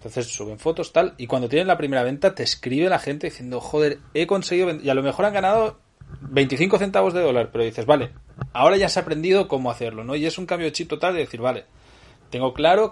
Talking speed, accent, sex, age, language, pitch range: 235 wpm, Spanish, male, 30-49, Spanish, 125-175 Hz